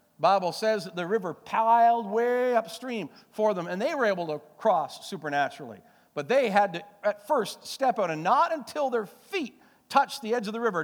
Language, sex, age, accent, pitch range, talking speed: English, male, 50-69, American, 160-265 Hz, 205 wpm